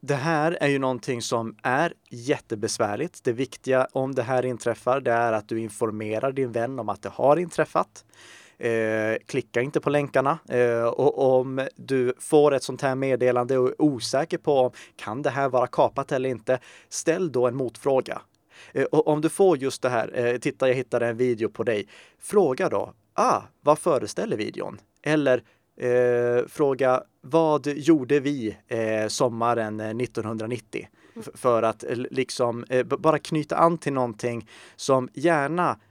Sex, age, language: male, 30-49, Swedish